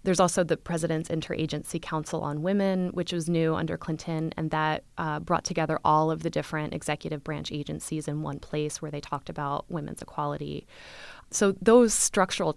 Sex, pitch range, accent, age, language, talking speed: female, 155-175 Hz, American, 20-39, English, 175 wpm